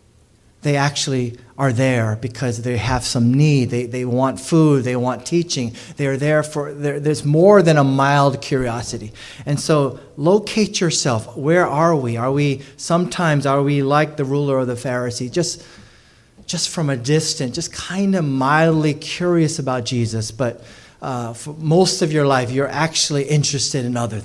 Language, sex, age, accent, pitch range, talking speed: English, male, 30-49, American, 115-150 Hz, 170 wpm